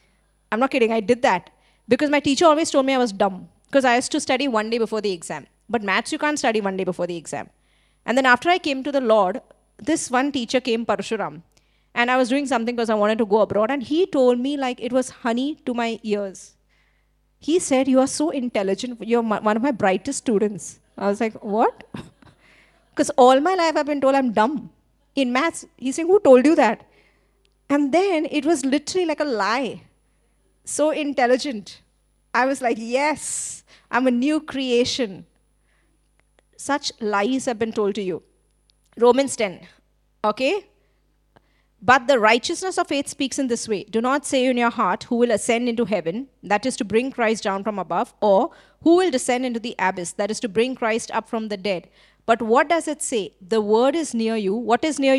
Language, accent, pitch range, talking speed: English, Indian, 215-280 Hz, 205 wpm